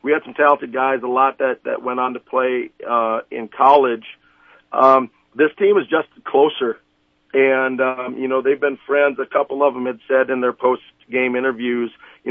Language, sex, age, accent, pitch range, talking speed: English, male, 50-69, American, 125-145 Hz, 195 wpm